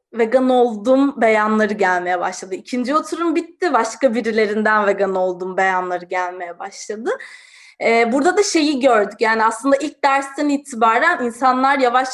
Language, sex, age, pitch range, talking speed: Turkish, female, 20-39, 210-280 Hz, 135 wpm